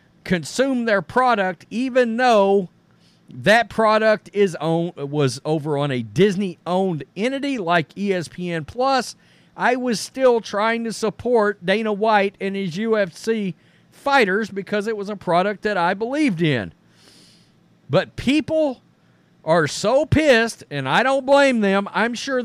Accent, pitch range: American, 170-230 Hz